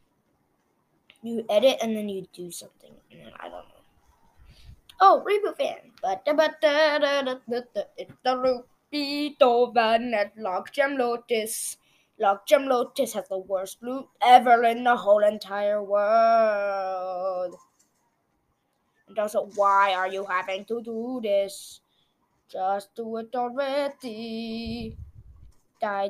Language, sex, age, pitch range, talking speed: English, female, 20-39, 200-265 Hz, 110 wpm